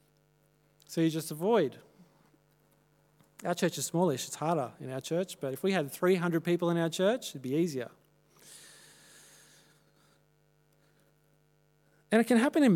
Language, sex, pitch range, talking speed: English, male, 145-170 Hz, 140 wpm